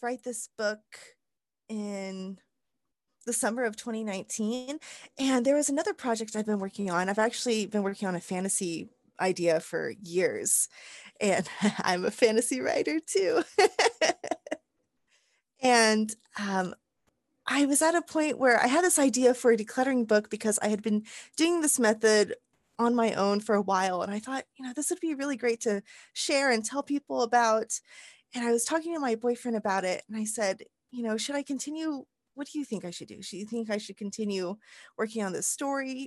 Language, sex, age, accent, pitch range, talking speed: English, female, 20-39, American, 205-270 Hz, 185 wpm